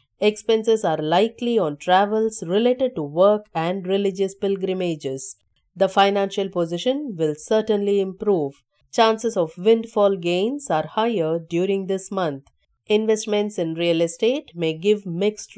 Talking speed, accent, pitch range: 125 wpm, Indian, 165-220 Hz